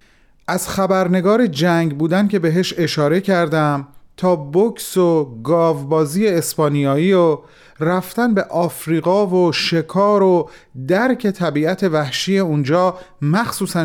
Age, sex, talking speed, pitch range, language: 40-59, male, 110 wpm, 135-180 Hz, Persian